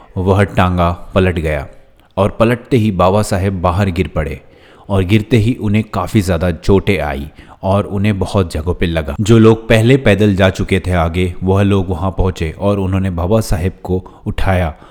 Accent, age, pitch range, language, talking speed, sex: native, 30-49, 85-105 Hz, Hindi, 175 wpm, male